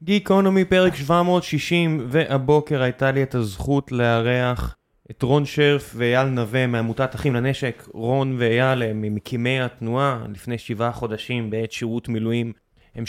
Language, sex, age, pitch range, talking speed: Hebrew, male, 20-39, 115-135 Hz, 135 wpm